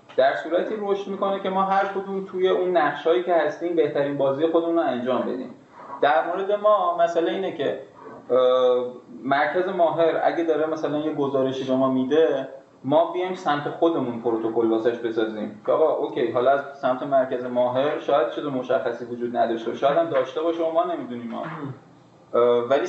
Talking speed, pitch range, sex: 170 wpm, 120-170 Hz, male